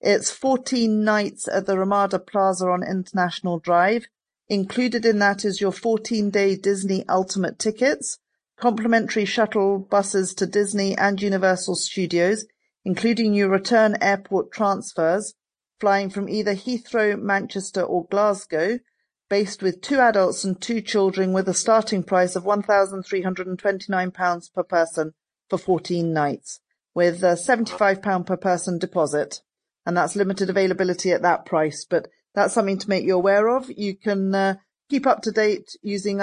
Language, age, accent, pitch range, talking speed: English, 40-59, British, 185-215 Hz, 140 wpm